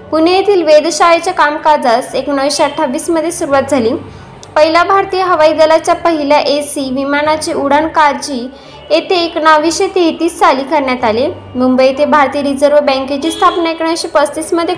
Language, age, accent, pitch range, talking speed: Marathi, 10-29, native, 280-330 Hz, 120 wpm